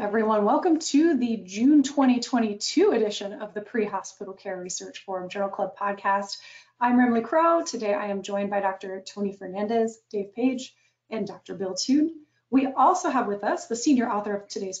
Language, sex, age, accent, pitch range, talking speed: English, female, 30-49, American, 205-265 Hz, 175 wpm